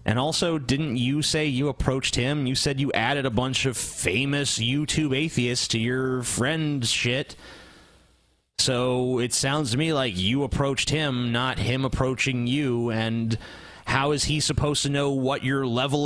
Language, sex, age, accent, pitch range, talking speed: English, male, 30-49, American, 110-145 Hz, 170 wpm